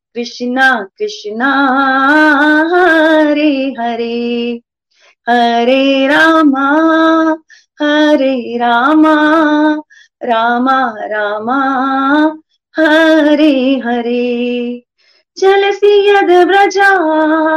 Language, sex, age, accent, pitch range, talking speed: Hindi, female, 30-49, native, 240-315 Hz, 45 wpm